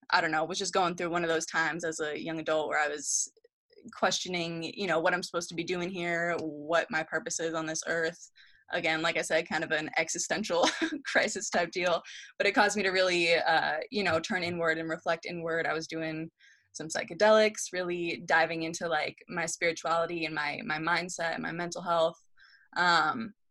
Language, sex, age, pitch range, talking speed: English, female, 20-39, 160-185 Hz, 205 wpm